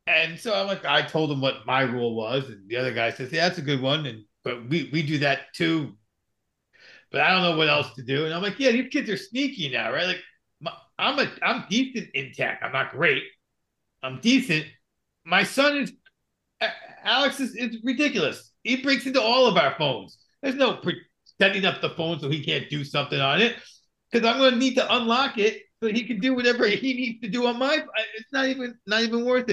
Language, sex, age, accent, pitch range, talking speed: English, male, 50-69, American, 155-240 Hz, 225 wpm